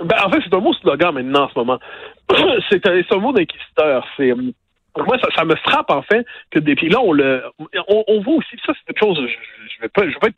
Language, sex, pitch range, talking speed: French, male, 140-230 Hz, 270 wpm